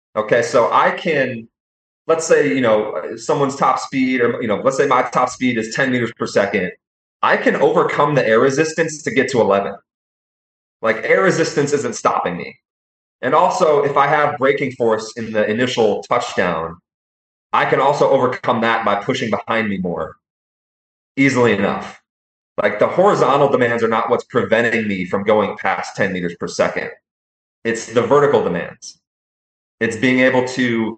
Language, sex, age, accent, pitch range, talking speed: English, male, 30-49, American, 100-135 Hz, 170 wpm